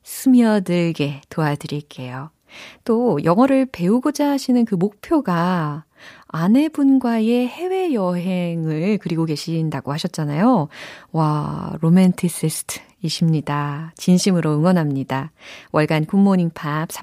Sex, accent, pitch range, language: female, native, 155-250 Hz, Korean